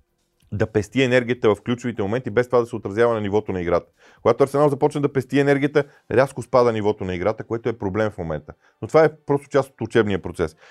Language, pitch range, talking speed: Bulgarian, 100-145 Hz, 220 wpm